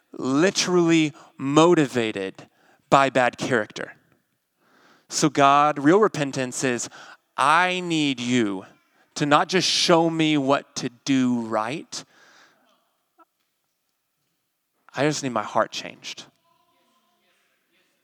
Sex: male